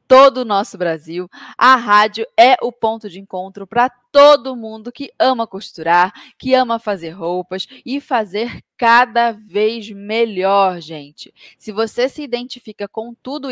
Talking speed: 145 wpm